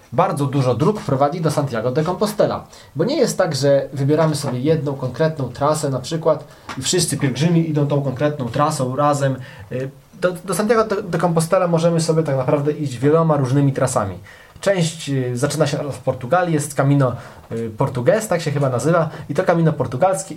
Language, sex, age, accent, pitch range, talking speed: Polish, male, 20-39, native, 130-170 Hz, 170 wpm